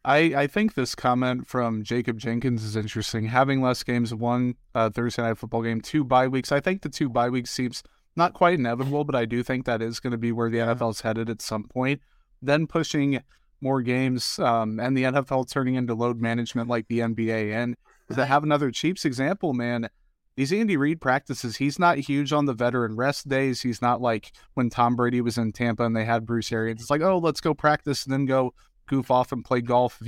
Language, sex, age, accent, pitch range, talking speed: English, male, 30-49, American, 115-135 Hz, 225 wpm